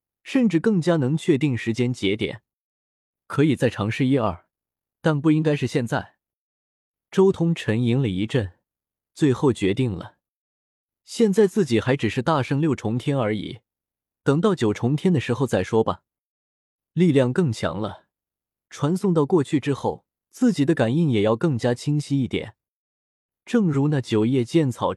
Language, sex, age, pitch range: Chinese, male, 20-39, 110-160 Hz